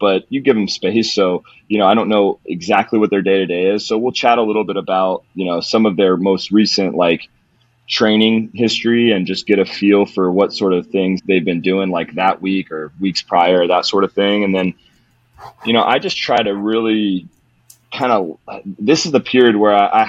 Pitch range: 95-110 Hz